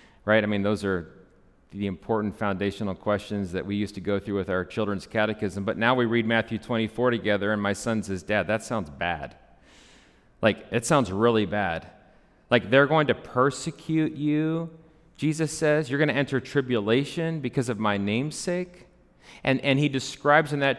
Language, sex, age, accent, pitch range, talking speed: English, male, 40-59, American, 105-145 Hz, 180 wpm